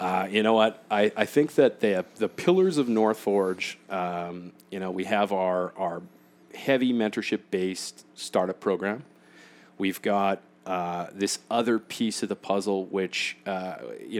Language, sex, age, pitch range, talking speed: English, male, 40-59, 95-115 Hz, 155 wpm